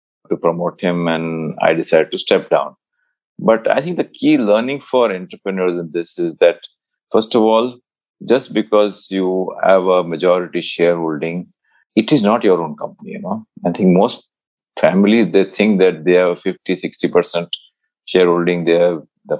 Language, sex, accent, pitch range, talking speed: Hindi, male, native, 85-125 Hz, 170 wpm